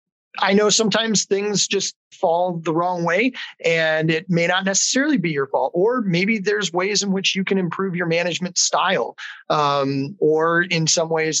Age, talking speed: 30-49, 180 wpm